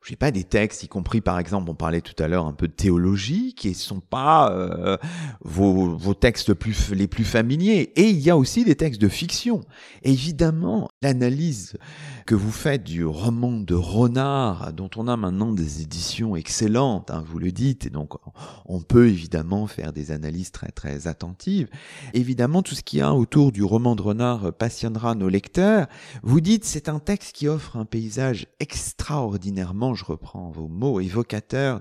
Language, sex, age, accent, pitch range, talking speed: French, male, 40-59, French, 100-145 Hz, 185 wpm